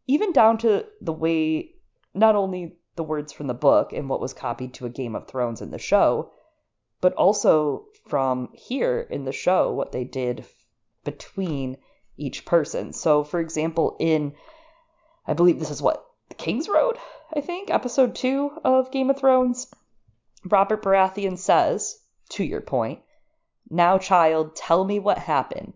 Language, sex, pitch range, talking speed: English, female, 150-220 Hz, 160 wpm